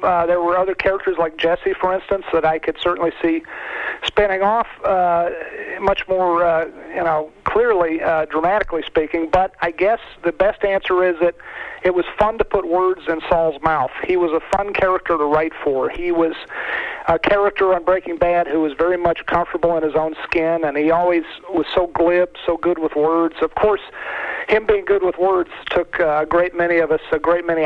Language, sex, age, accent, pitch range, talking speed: English, male, 50-69, American, 160-195 Hz, 200 wpm